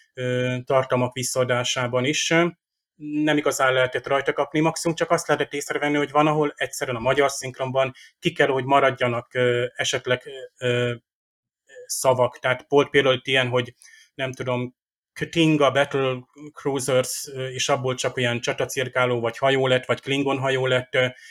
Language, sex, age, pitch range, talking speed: Hungarian, male, 30-49, 125-145 Hz, 135 wpm